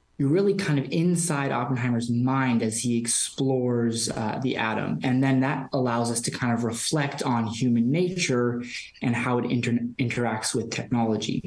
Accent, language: American, English